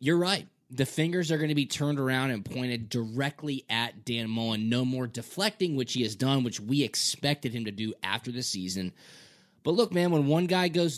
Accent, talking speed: American, 215 wpm